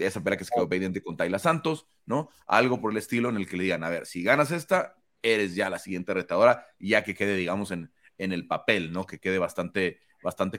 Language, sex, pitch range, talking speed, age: Spanish, male, 100-140 Hz, 240 wpm, 30-49